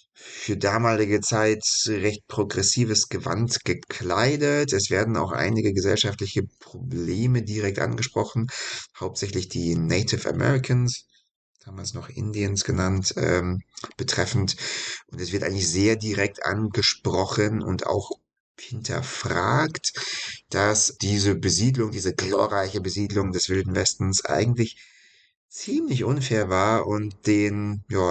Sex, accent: male, German